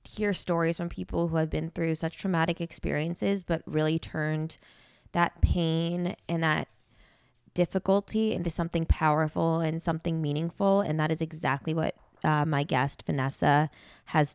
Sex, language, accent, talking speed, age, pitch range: female, English, American, 145 wpm, 20-39, 150-170 Hz